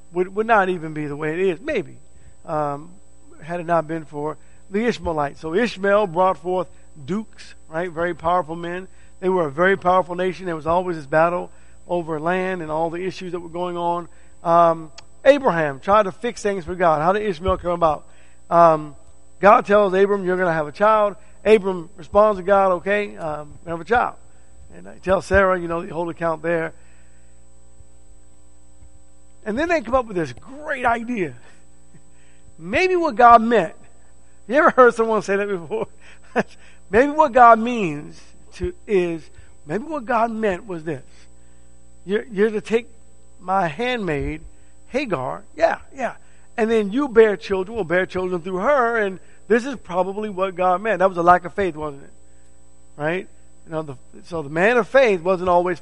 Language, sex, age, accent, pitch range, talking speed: English, male, 50-69, American, 140-200 Hz, 180 wpm